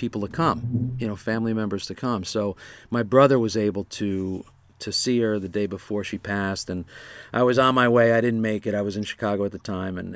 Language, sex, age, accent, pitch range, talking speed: English, male, 50-69, American, 100-120 Hz, 240 wpm